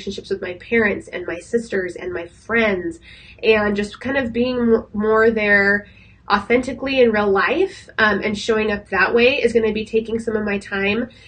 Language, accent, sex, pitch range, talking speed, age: English, American, female, 200-235 Hz, 185 wpm, 20-39